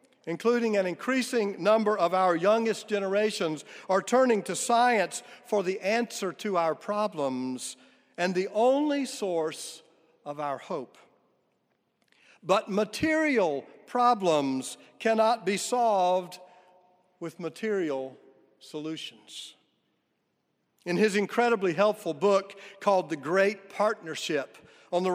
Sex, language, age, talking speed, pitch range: male, English, 50-69, 105 wpm, 175-225 Hz